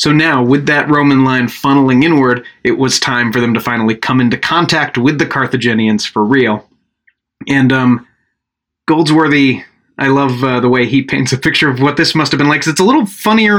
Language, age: English, 30-49